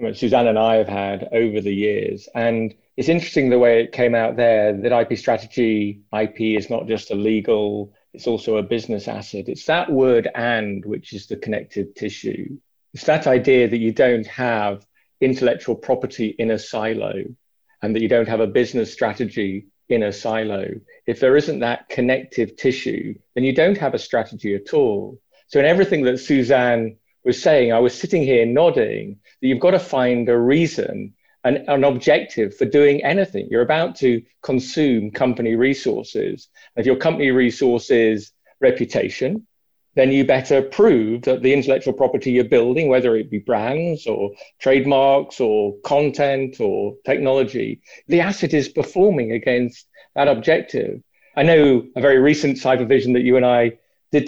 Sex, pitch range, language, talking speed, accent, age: male, 110-140 Hz, English, 170 wpm, British, 40-59